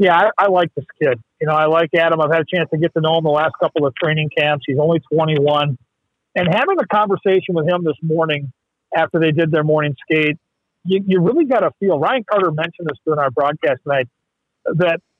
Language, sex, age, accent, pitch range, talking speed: English, male, 40-59, American, 155-200 Hz, 230 wpm